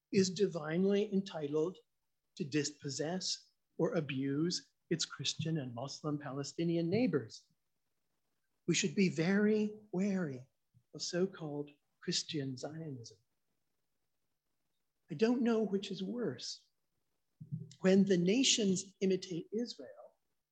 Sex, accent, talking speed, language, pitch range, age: male, American, 95 wpm, English, 150-200 Hz, 50-69